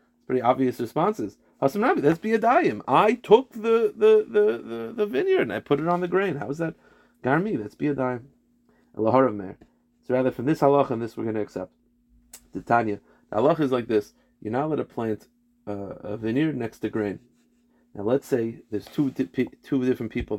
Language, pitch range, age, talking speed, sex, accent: English, 110-155 Hz, 30-49, 195 wpm, male, American